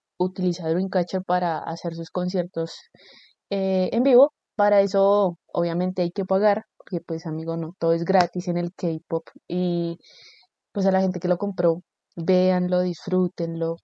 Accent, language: Colombian, Spanish